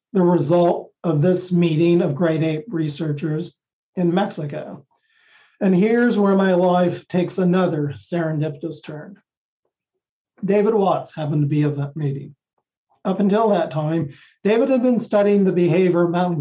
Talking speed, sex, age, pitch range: 145 wpm, male, 50-69, 160-195 Hz